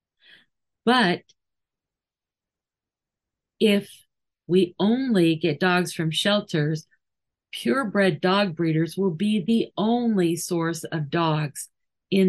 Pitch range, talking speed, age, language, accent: 160-210 Hz, 95 wpm, 50-69, English, American